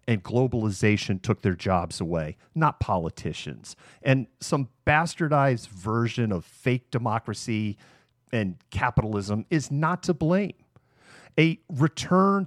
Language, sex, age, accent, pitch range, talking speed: English, male, 40-59, American, 110-150 Hz, 110 wpm